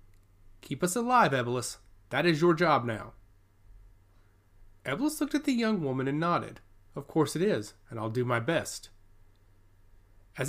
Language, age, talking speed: English, 30-49, 155 wpm